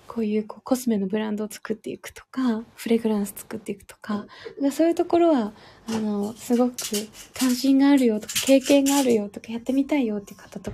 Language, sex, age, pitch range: Japanese, female, 20-39, 210-250 Hz